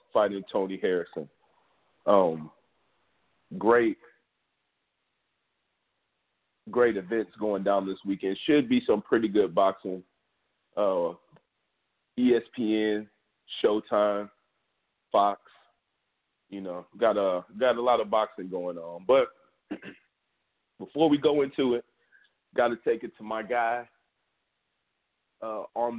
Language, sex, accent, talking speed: English, male, American, 110 wpm